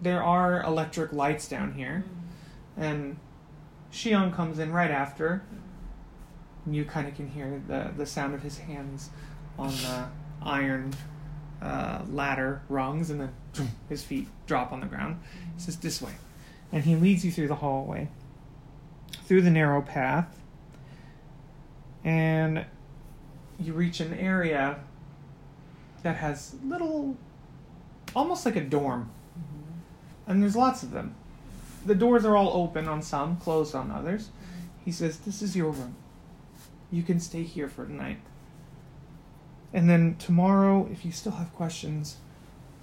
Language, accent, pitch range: English, American, 145-175 Hz